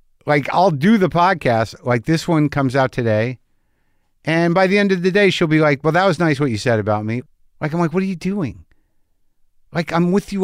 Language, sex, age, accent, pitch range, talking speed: English, male, 50-69, American, 115-175 Hz, 235 wpm